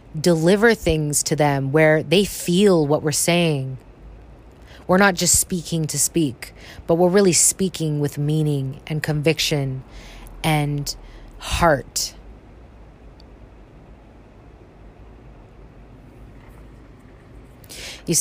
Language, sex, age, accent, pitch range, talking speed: English, female, 20-39, American, 130-160 Hz, 90 wpm